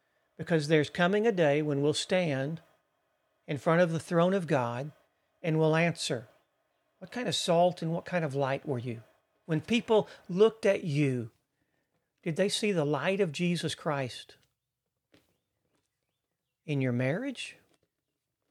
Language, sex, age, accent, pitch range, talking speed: English, male, 40-59, American, 130-175 Hz, 145 wpm